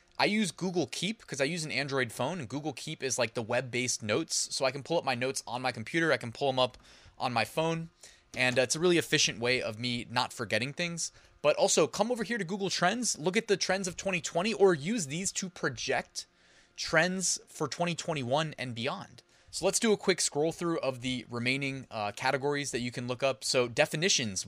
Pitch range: 125-170 Hz